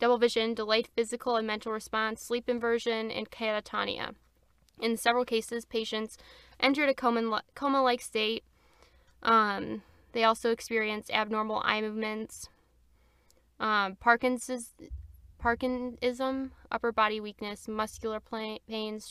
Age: 10-29